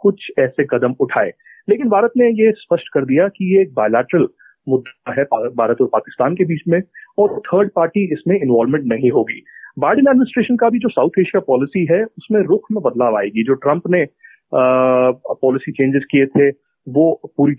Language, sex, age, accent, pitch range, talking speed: Hindi, male, 30-49, native, 140-225 Hz, 180 wpm